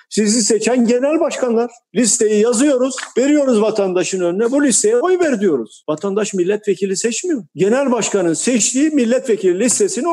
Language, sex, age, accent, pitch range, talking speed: Turkish, male, 50-69, native, 165-240 Hz, 130 wpm